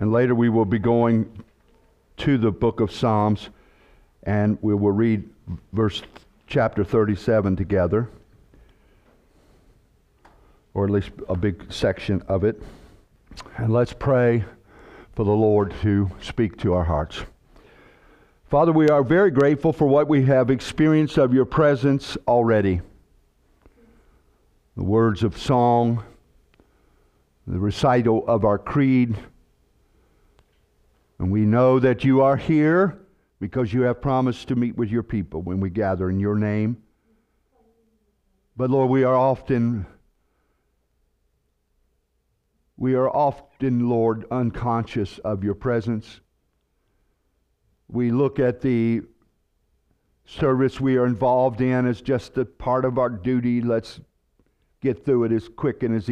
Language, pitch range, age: English, 100-130 Hz, 60-79